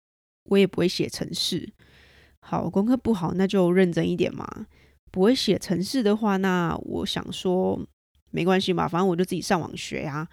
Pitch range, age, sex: 170-205 Hz, 20-39, female